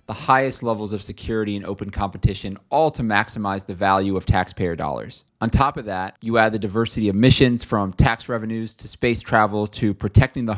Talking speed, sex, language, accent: 200 wpm, male, English, American